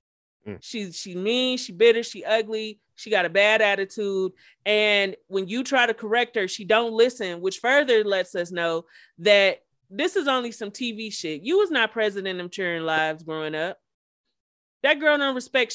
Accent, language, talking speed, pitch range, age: American, English, 180 wpm, 190-245 Hz, 30-49